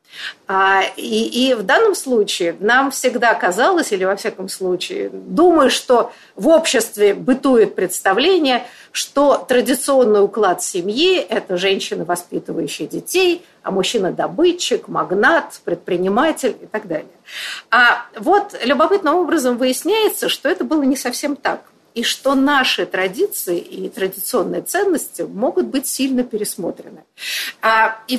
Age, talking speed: 50-69, 130 wpm